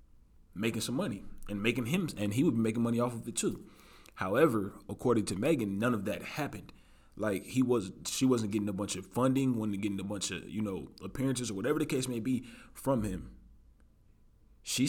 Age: 20-39